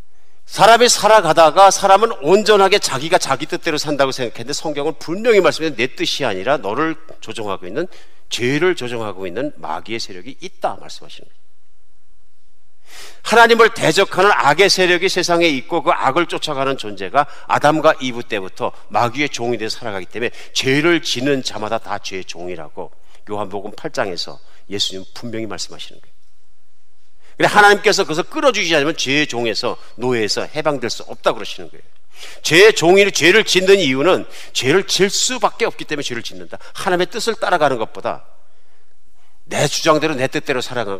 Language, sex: Korean, male